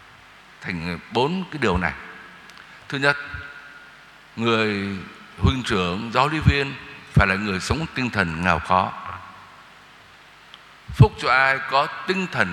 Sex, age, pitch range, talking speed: male, 60-79, 110-165 Hz, 130 wpm